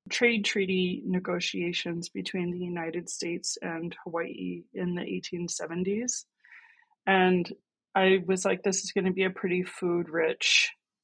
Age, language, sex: 20-39, English, female